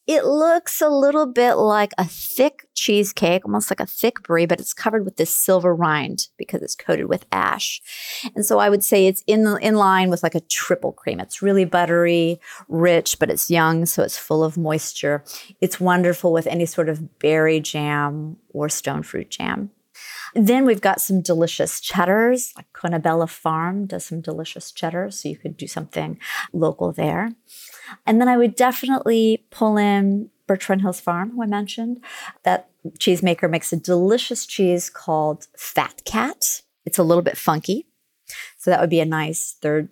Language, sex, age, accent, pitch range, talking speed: English, female, 30-49, American, 165-210 Hz, 175 wpm